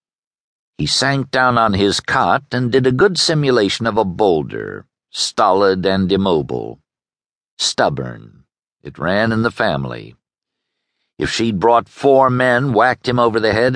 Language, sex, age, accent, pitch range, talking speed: English, male, 60-79, American, 100-130 Hz, 145 wpm